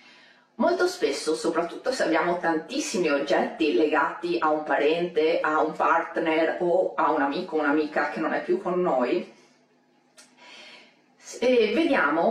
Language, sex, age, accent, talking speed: Italian, female, 30-49, native, 130 wpm